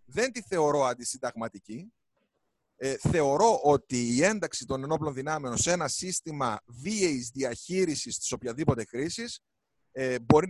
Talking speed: 125 wpm